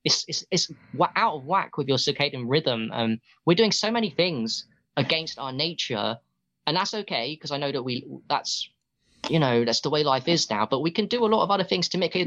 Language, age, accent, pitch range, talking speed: English, 20-39, British, 125-160 Hz, 235 wpm